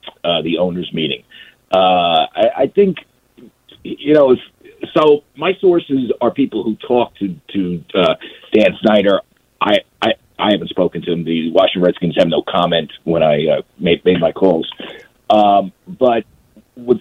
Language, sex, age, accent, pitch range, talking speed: English, male, 50-69, American, 95-155 Hz, 160 wpm